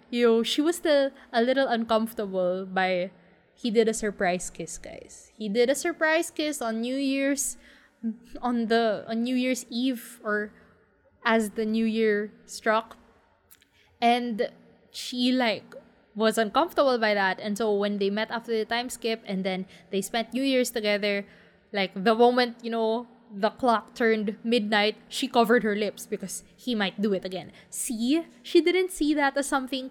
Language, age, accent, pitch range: English, 20-39, Filipino, 200-245 Hz